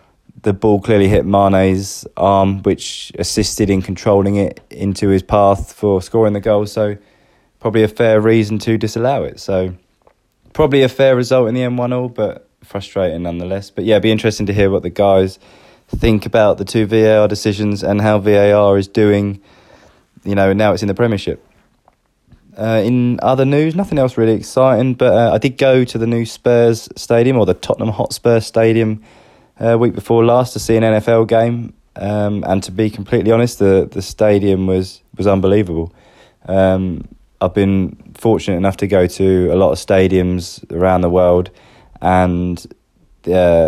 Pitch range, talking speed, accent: 95-115 Hz, 175 wpm, British